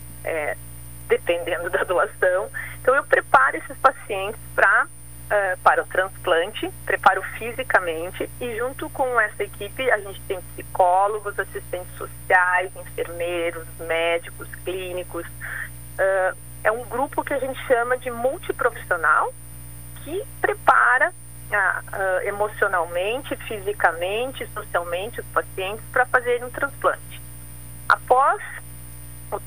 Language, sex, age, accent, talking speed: Portuguese, female, 40-59, Brazilian, 100 wpm